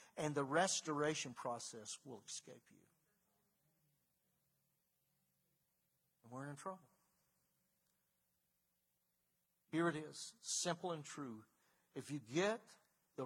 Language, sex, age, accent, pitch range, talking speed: English, male, 60-79, American, 140-175 Hz, 95 wpm